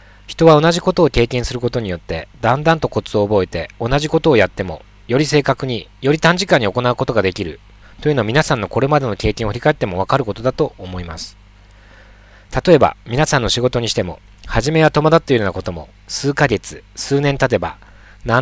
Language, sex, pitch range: Japanese, male, 105-140 Hz